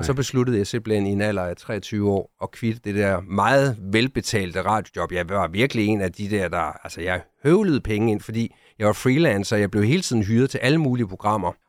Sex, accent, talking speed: male, native, 225 wpm